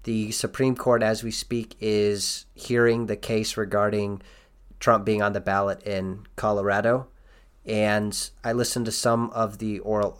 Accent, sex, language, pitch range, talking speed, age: American, male, English, 100-115 Hz, 155 wpm, 30-49